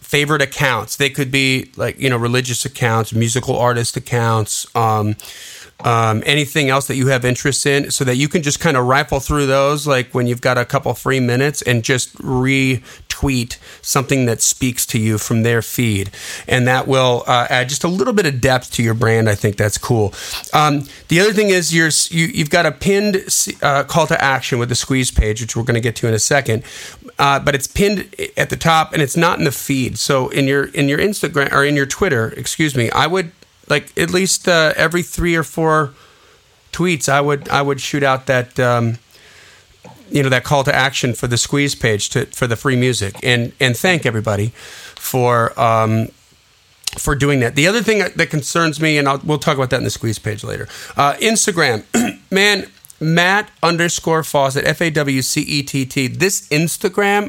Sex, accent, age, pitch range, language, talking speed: male, American, 40-59, 120-155 Hz, English, 205 wpm